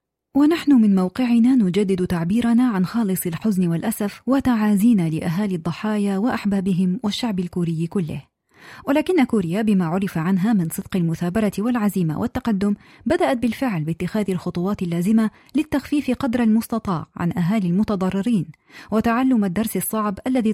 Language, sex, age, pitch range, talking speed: Arabic, female, 30-49, 180-225 Hz, 120 wpm